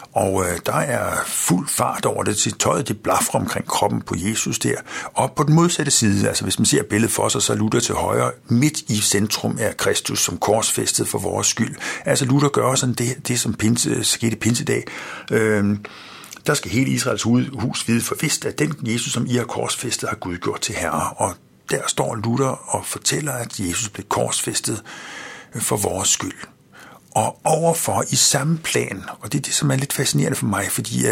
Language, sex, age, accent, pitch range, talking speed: Danish, male, 60-79, native, 105-145 Hz, 205 wpm